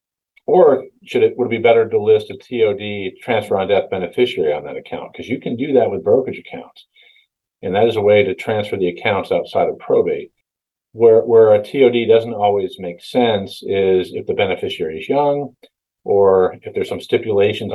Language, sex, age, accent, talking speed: English, male, 40-59, American, 185 wpm